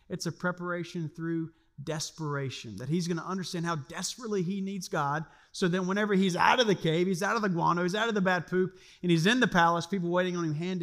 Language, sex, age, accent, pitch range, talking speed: English, male, 40-59, American, 145-185 Hz, 245 wpm